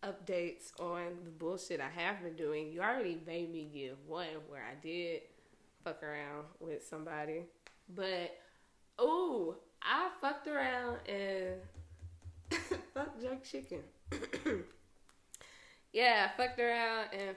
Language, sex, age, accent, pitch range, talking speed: English, female, 20-39, American, 185-275 Hz, 120 wpm